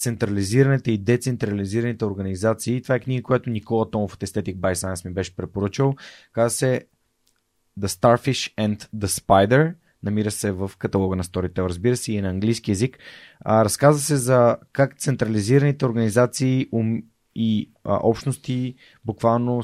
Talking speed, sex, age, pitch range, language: 140 wpm, male, 20-39, 100-120 Hz, Bulgarian